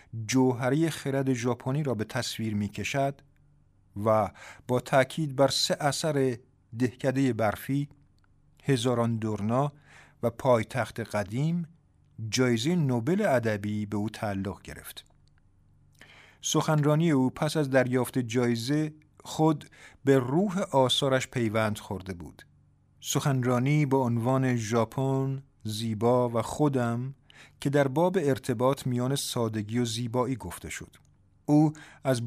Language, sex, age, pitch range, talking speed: Persian, male, 50-69, 110-140 Hz, 110 wpm